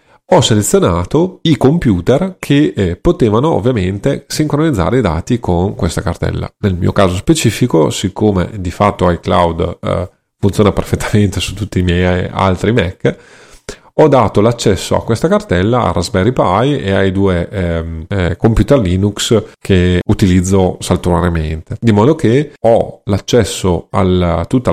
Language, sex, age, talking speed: Italian, male, 30-49, 140 wpm